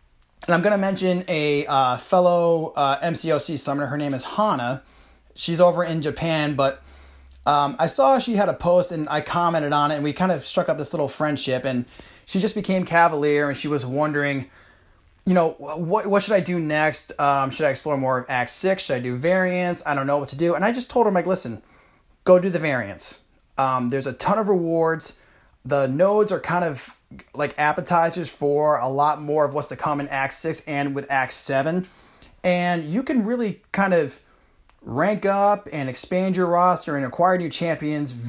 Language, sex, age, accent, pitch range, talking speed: English, male, 30-49, American, 140-180 Hz, 205 wpm